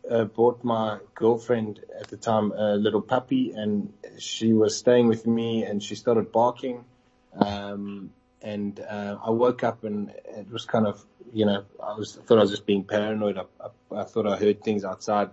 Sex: male